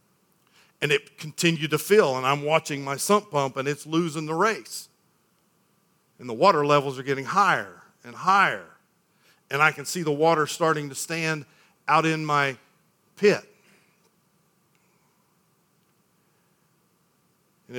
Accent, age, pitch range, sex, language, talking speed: American, 50-69, 140-170 Hz, male, English, 130 wpm